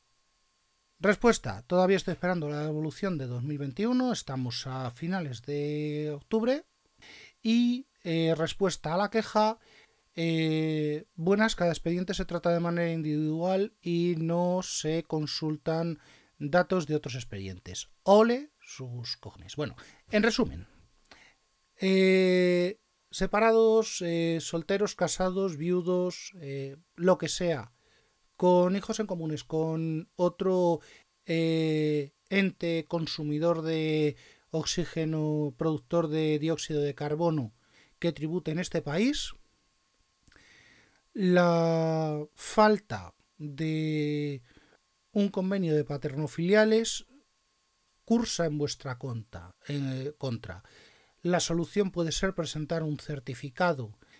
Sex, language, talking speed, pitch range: male, Spanish, 100 wpm, 150-185 Hz